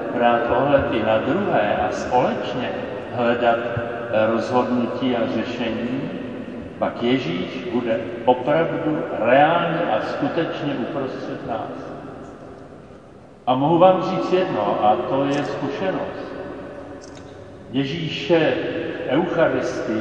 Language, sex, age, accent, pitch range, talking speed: Czech, male, 50-69, native, 125-165 Hz, 95 wpm